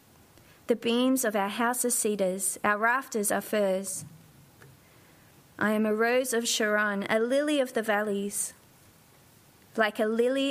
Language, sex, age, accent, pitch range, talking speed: English, female, 30-49, Australian, 200-250 Hz, 145 wpm